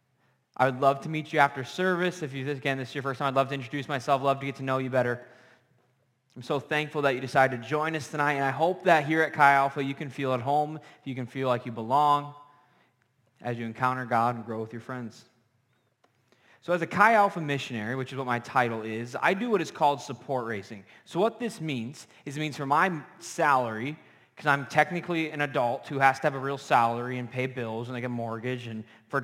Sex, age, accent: male, 20-39, American